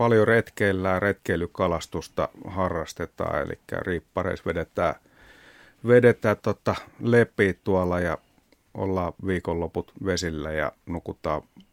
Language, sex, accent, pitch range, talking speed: Finnish, male, native, 85-105 Hz, 85 wpm